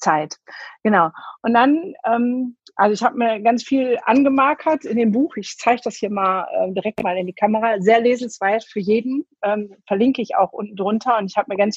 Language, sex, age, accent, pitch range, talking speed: German, female, 50-69, German, 195-245 Hz, 210 wpm